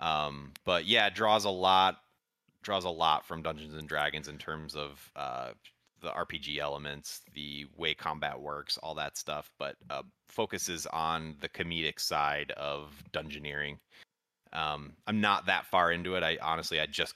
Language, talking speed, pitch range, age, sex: English, 160 wpm, 75-95 Hz, 30-49, male